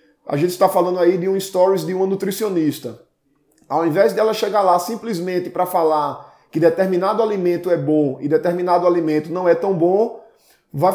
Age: 20-39